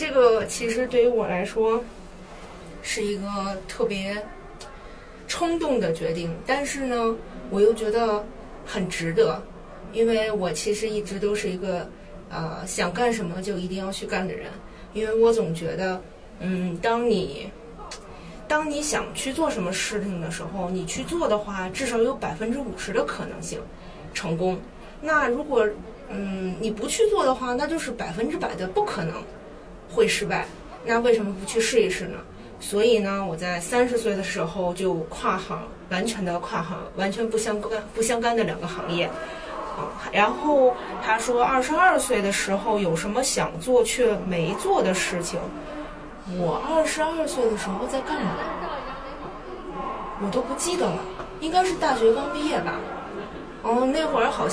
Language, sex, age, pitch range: Chinese, female, 20-39, 195-245 Hz